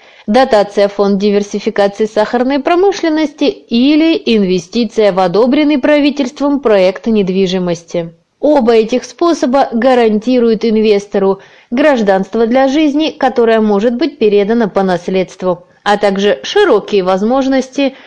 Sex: female